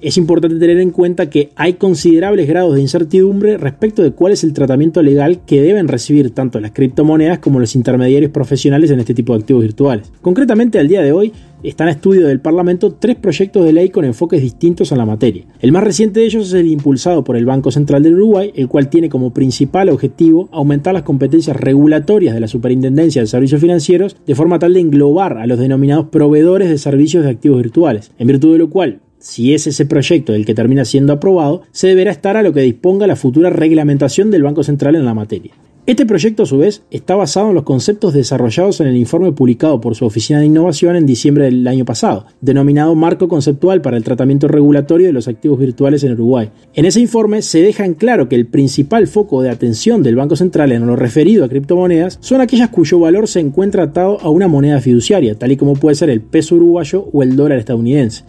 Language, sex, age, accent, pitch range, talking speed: Spanish, male, 20-39, Argentinian, 135-180 Hz, 215 wpm